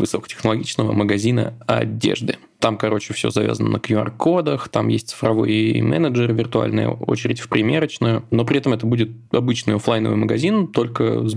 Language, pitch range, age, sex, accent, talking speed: Russian, 110-115 Hz, 20-39, male, native, 145 wpm